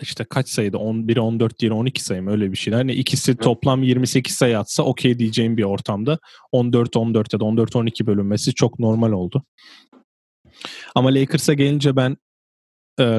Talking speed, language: 145 wpm, Turkish